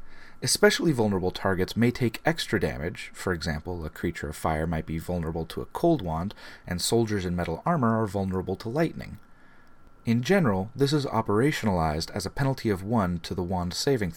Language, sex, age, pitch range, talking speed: English, male, 30-49, 85-115 Hz, 180 wpm